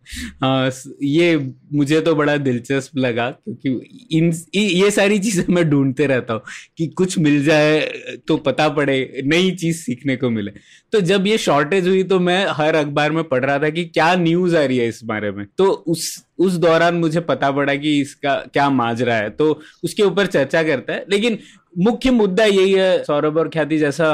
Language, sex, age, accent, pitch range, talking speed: Hindi, male, 20-39, native, 140-170 Hz, 125 wpm